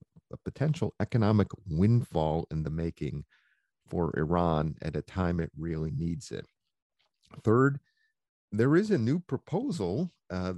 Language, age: English, 50-69